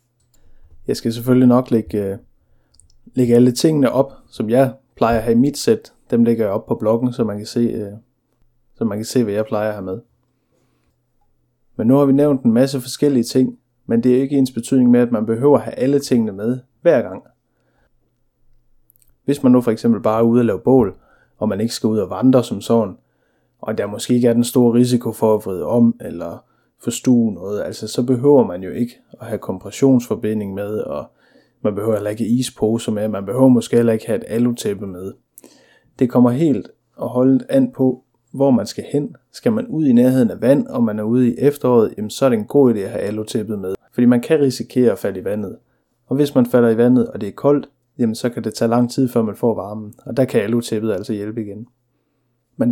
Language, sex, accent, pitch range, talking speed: Danish, male, native, 115-130 Hz, 225 wpm